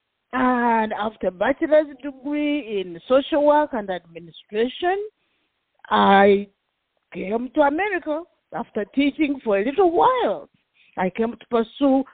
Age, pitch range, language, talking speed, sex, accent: 40-59, 205-285 Hz, English, 115 wpm, female, Nigerian